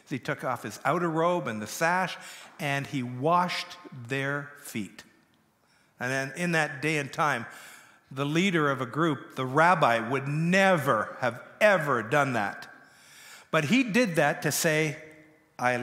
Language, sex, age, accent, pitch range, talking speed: English, male, 50-69, American, 145-195 Hz, 155 wpm